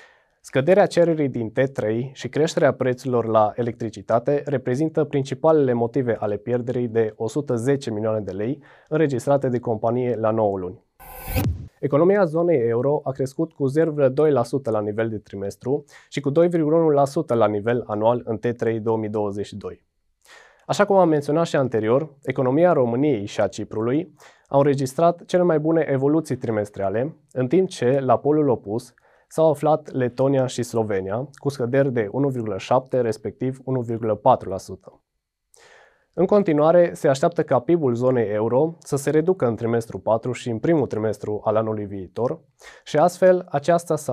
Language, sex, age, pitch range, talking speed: Romanian, male, 20-39, 115-150 Hz, 145 wpm